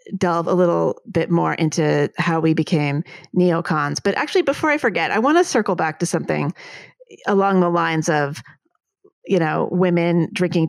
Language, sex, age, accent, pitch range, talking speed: English, female, 30-49, American, 170-245 Hz, 170 wpm